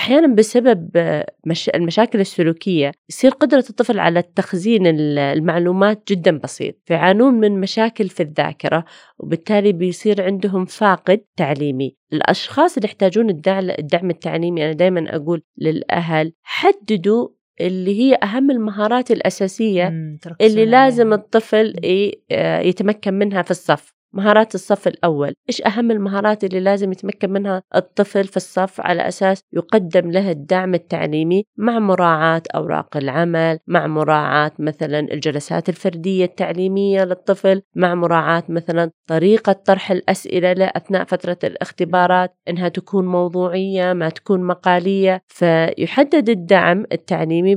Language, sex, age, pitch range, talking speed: Arabic, female, 30-49, 170-205 Hz, 115 wpm